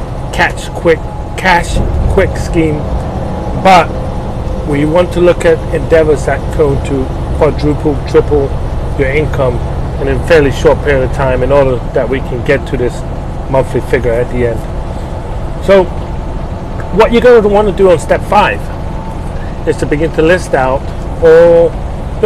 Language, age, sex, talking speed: English, 30-49, male, 150 wpm